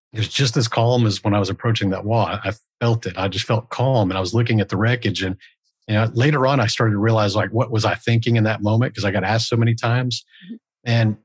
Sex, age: male, 50-69